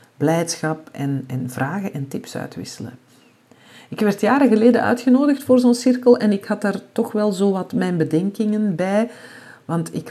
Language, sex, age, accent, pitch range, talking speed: Dutch, female, 50-69, Dutch, 155-220 Hz, 165 wpm